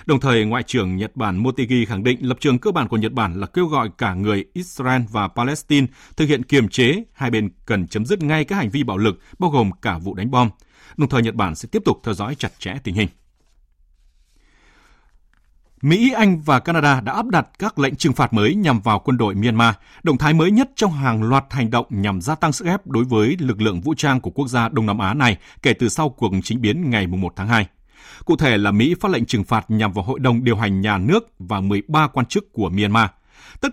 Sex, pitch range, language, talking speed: male, 100-145 Hz, Vietnamese, 240 wpm